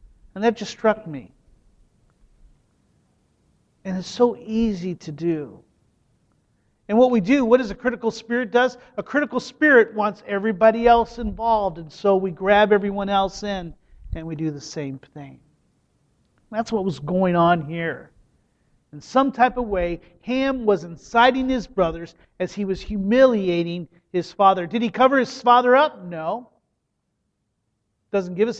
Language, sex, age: English, male, 40-59